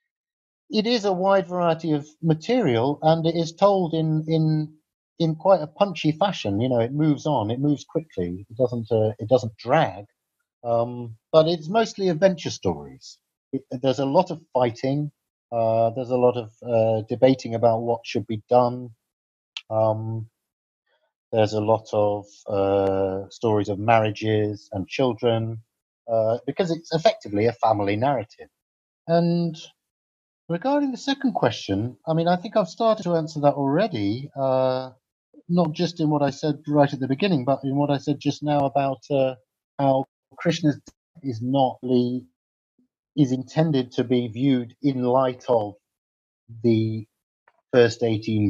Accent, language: British, English